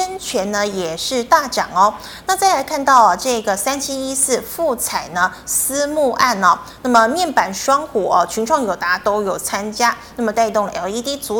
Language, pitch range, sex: Chinese, 200-270 Hz, female